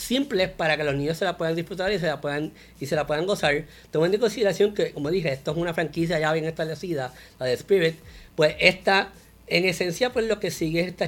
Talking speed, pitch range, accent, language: 240 wpm, 145-175 Hz, American, English